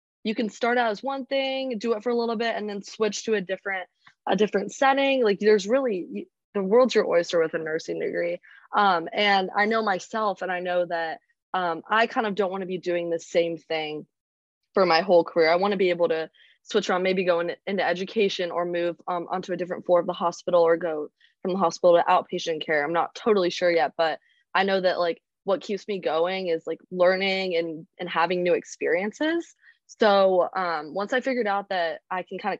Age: 20-39